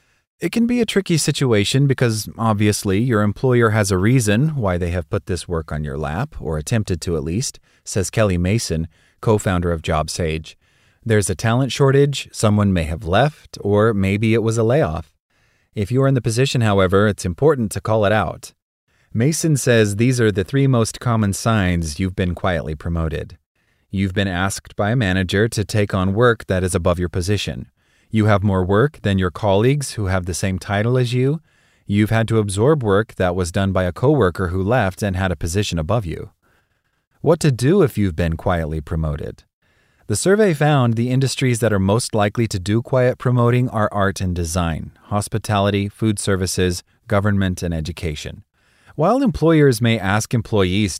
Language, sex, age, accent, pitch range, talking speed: English, male, 30-49, American, 90-120 Hz, 185 wpm